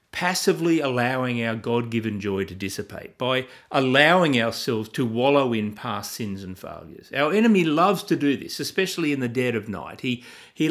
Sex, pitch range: male, 125-170 Hz